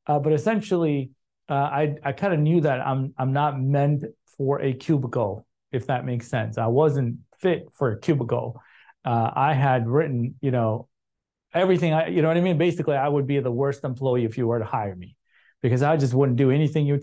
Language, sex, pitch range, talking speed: English, male, 130-155 Hz, 215 wpm